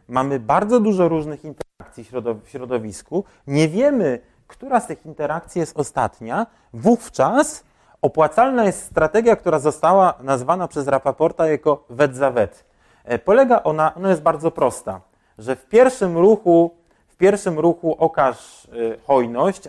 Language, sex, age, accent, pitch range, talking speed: Polish, male, 30-49, native, 125-175 Hz, 130 wpm